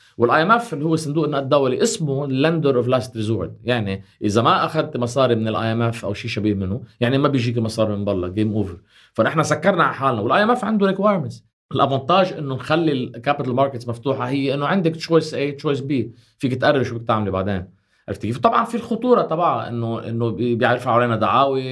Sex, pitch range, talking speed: male, 110-140 Hz, 200 wpm